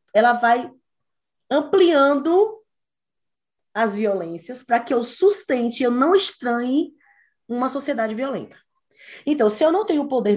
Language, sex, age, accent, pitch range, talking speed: Portuguese, female, 20-39, Brazilian, 205-295 Hz, 125 wpm